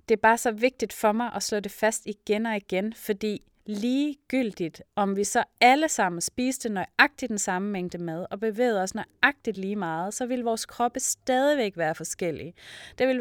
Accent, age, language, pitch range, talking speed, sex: native, 30-49, Danish, 185-235 Hz, 190 wpm, female